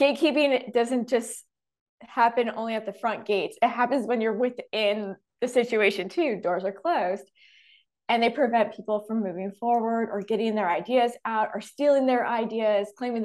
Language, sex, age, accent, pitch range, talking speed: English, female, 20-39, American, 210-260 Hz, 170 wpm